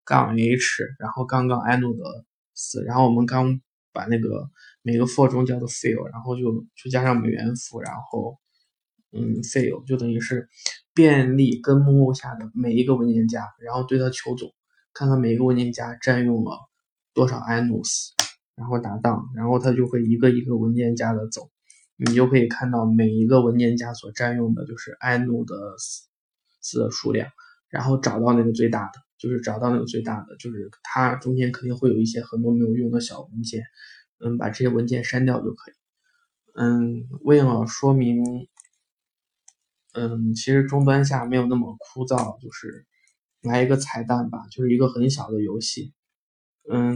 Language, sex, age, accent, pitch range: Chinese, male, 20-39, native, 115-130 Hz